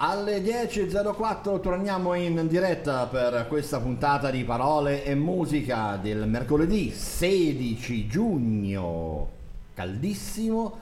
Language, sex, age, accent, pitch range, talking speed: Italian, male, 50-69, native, 95-135 Hz, 95 wpm